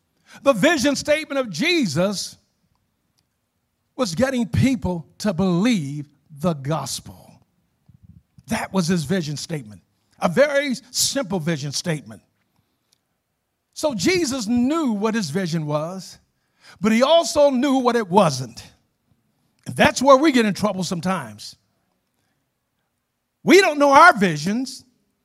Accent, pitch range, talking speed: American, 195-295 Hz, 115 wpm